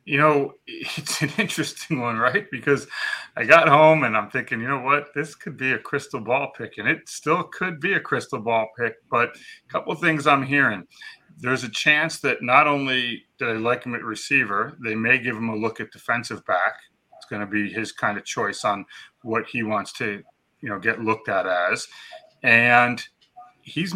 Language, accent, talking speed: English, American, 205 wpm